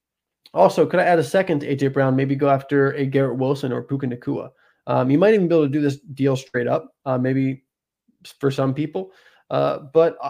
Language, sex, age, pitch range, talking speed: English, male, 20-39, 140-165 Hz, 215 wpm